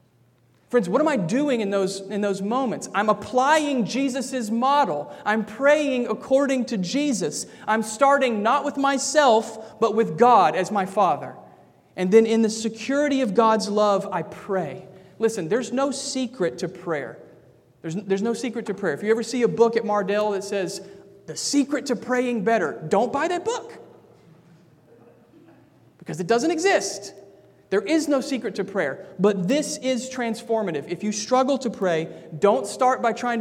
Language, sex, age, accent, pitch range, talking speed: English, male, 40-59, American, 180-245 Hz, 165 wpm